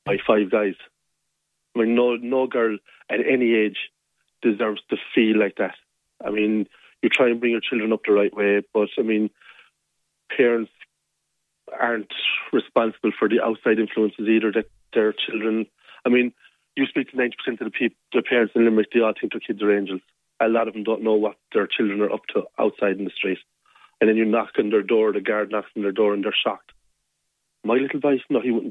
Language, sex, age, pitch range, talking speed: English, male, 40-59, 105-115 Hz, 210 wpm